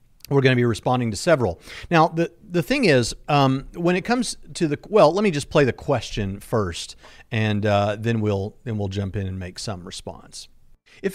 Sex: male